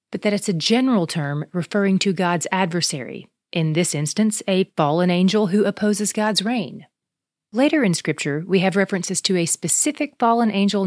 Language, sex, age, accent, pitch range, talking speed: English, female, 30-49, American, 165-225 Hz, 165 wpm